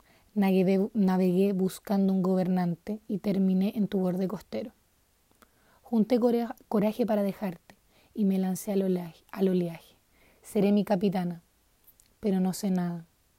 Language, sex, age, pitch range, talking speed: Spanish, female, 30-49, 185-210 Hz, 115 wpm